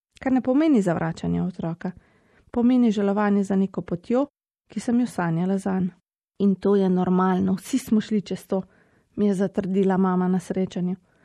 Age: 30-49